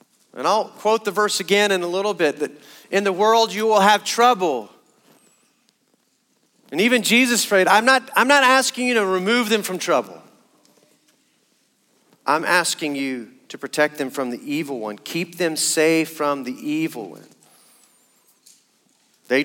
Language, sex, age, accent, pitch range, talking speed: English, male, 40-59, American, 135-205 Hz, 155 wpm